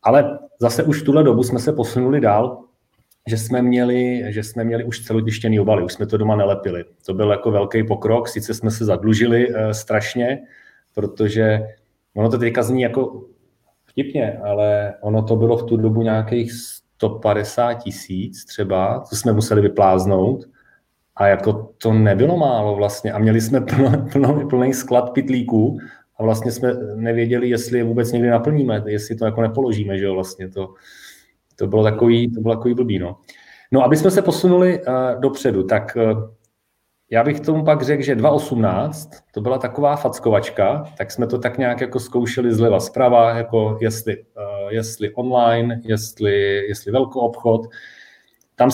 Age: 30-49